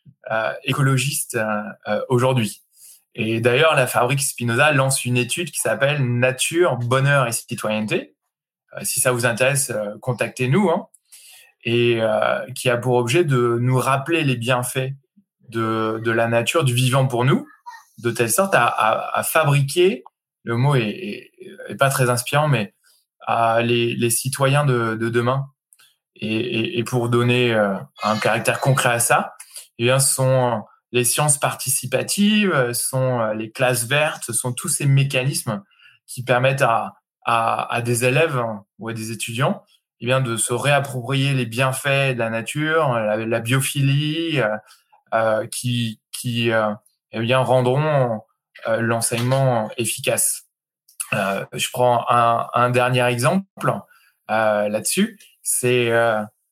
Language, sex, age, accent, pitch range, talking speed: French, male, 20-39, French, 115-135 Hz, 145 wpm